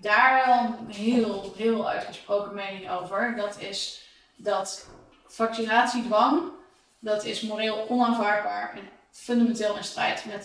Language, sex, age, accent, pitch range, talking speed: English, female, 20-39, Dutch, 200-225 Hz, 120 wpm